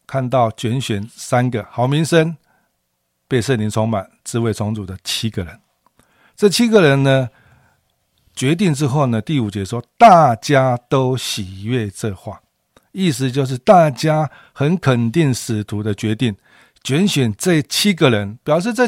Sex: male